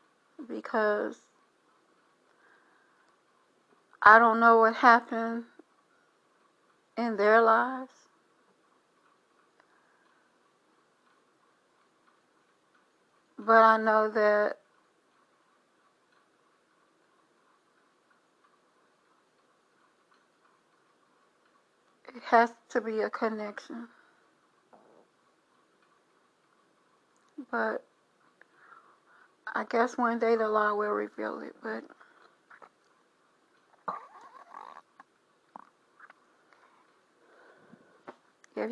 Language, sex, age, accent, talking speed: English, female, 60-79, American, 50 wpm